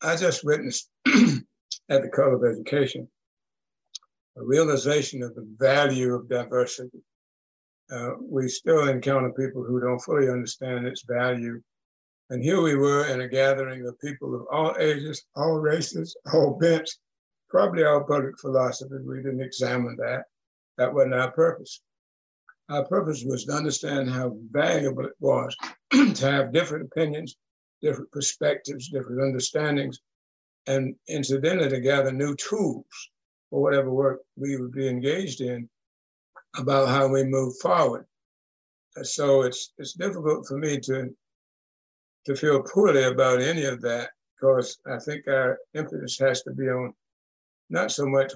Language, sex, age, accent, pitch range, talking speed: English, male, 60-79, American, 125-145 Hz, 145 wpm